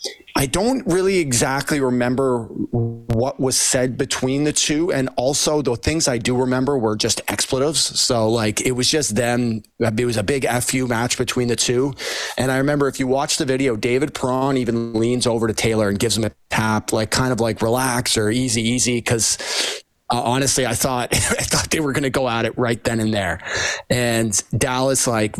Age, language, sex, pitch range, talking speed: 30-49, English, male, 110-135 Hz, 200 wpm